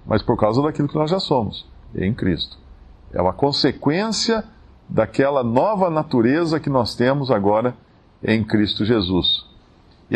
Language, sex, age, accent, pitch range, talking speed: Portuguese, male, 50-69, Brazilian, 95-135 Hz, 140 wpm